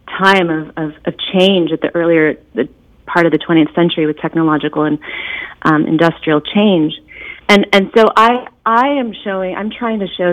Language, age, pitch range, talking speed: English, 30-49, 160-190 Hz, 180 wpm